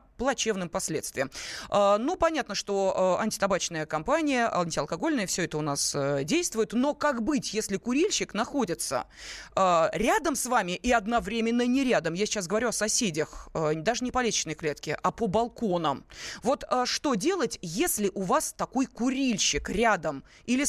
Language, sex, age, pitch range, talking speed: Russian, female, 20-39, 185-255 Hz, 140 wpm